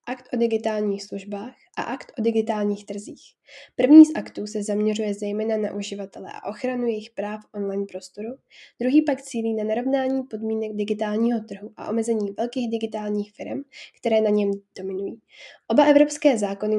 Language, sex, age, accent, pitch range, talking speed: Czech, female, 10-29, native, 205-245 Hz, 155 wpm